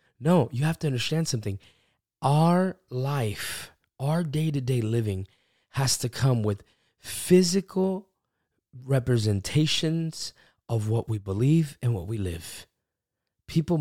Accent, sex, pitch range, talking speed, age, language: American, male, 110-150 Hz, 115 wpm, 20-39, English